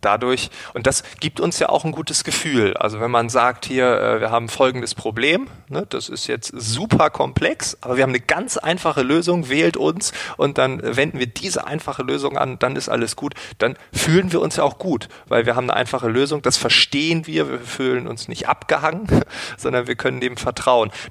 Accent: German